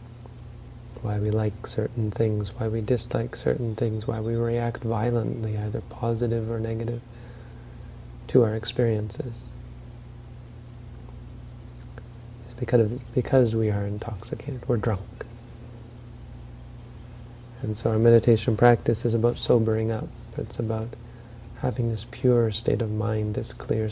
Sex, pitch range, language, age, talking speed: male, 115-120 Hz, English, 30-49, 120 wpm